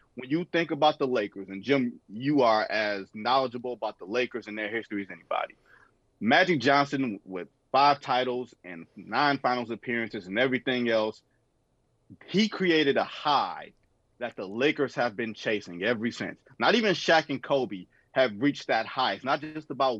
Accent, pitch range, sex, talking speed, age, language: American, 115-155 Hz, male, 170 wpm, 30-49, English